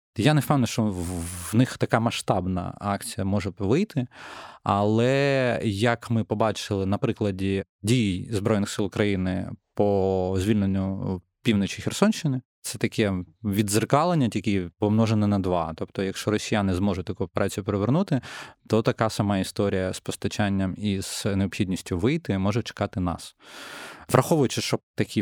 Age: 20-39